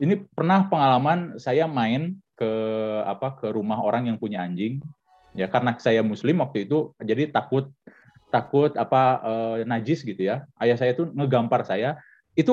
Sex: male